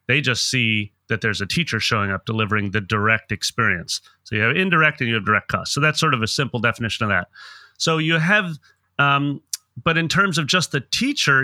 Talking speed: 220 wpm